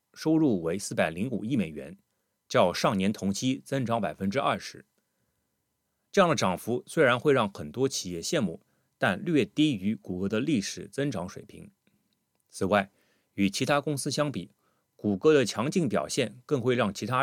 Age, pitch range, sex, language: 30-49, 100-145 Hz, male, Chinese